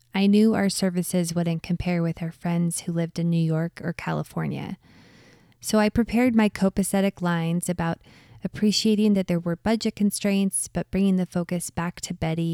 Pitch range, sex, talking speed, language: 165-195 Hz, female, 170 wpm, English